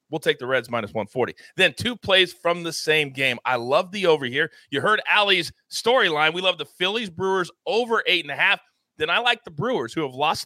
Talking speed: 230 wpm